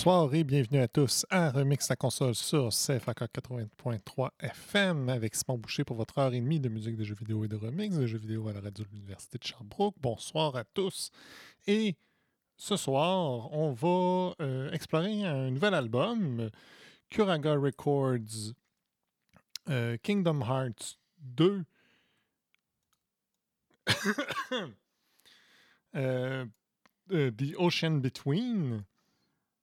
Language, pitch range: French, 120-170 Hz